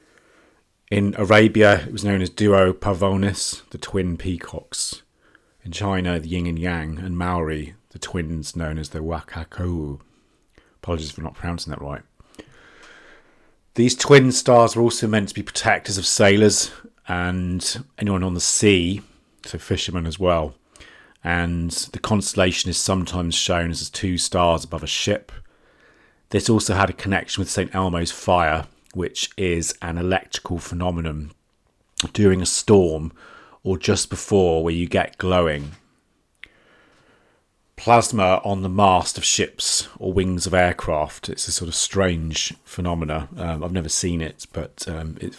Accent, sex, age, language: British, male, 40-59, English